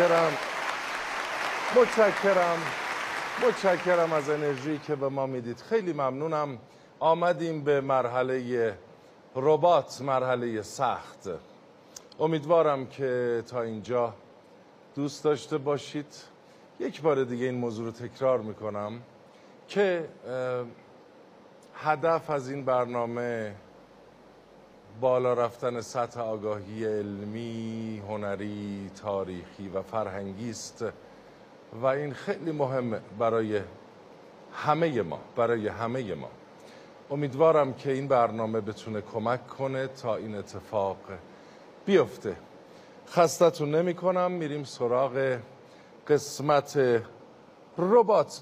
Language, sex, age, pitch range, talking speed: Persian, male, 50-69, 115-150 Hz, 95 wpm